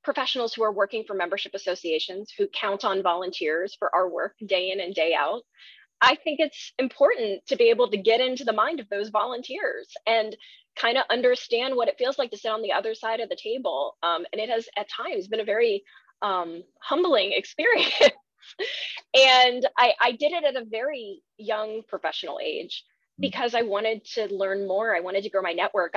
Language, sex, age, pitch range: English, female, 20-39, 190-250 Hz